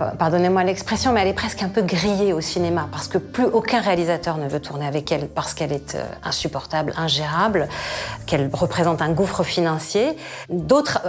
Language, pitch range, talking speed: French, 170-215 Hz, 175 wpm